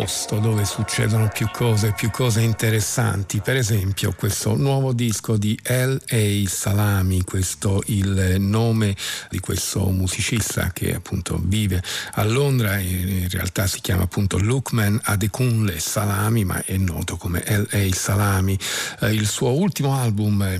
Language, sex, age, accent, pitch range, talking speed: Italian, male, 50-69, native, 95-115 Hz, 135 wpm